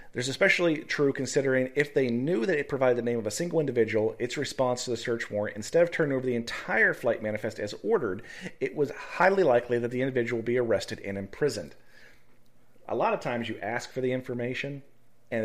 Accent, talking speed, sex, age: American, 215 wpm, male, 40-59